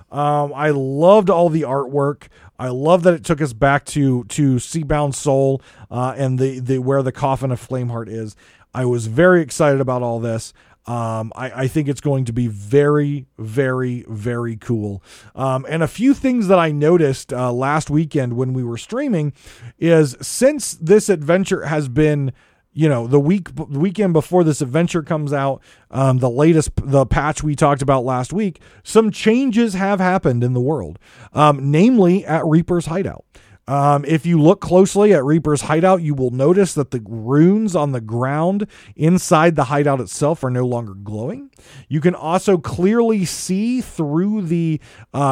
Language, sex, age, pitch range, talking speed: English, male, 30-49, 130-170 Hz, 175 wpm